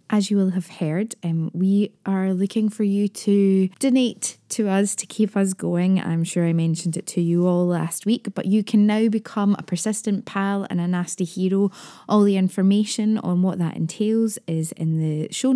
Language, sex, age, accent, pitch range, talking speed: English, female, 20-39, British, 165-200 Hz, 200 wpm